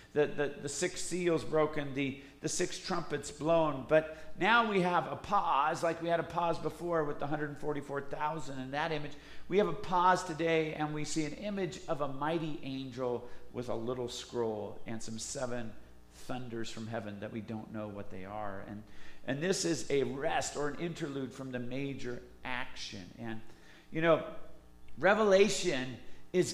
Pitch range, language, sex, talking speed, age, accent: 130-175 Hz, English, male, 185 wpm, 50-69, American